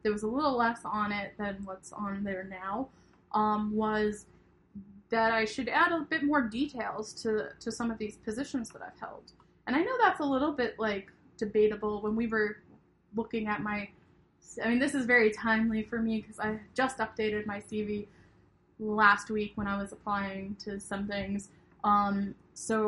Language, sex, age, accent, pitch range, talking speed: English, female, 10-29, American, 205-230 Hz, 190 wpm